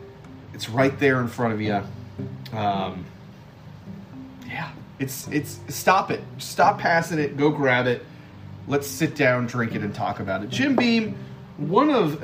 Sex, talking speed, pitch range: male, 155 wpm, 110-150 Hz